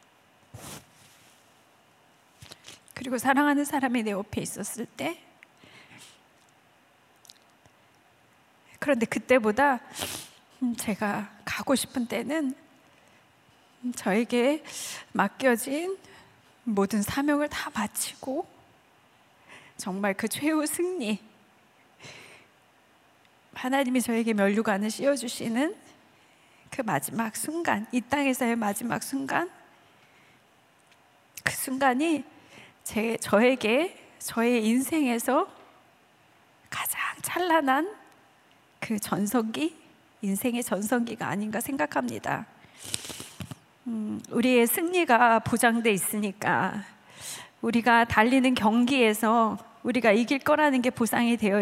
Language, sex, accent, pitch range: Korean, female, native, 220-275 Hz